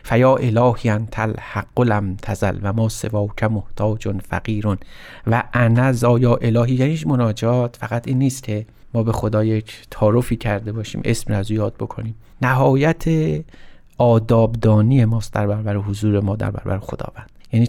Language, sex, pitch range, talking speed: Persian, male, 110-130 Hz, 140 wpm